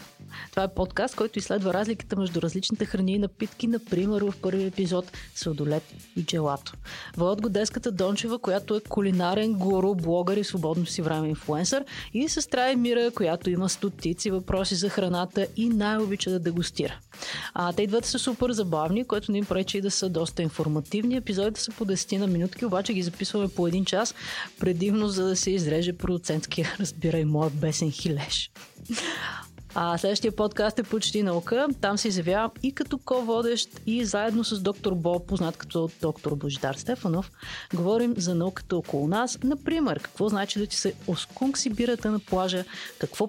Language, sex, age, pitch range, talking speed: Bulgarian, female, 30-49, 170-215 Hz, 160 wpm